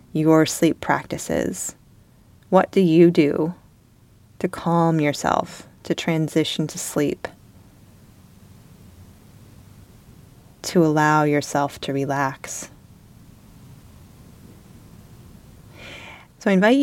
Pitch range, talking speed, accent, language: 135-180 Hz, 80 wpm, American, English